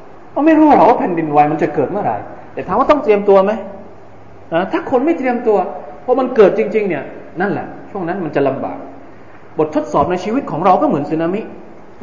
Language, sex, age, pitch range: Thai, male, 20-39, 155-255 Hz